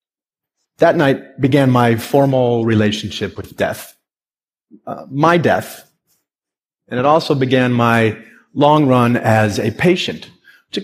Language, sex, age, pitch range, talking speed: English, male, 40-59, 110-150 Hz, 120 wpm